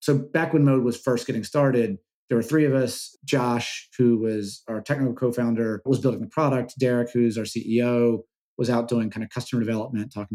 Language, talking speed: English, 205 wpm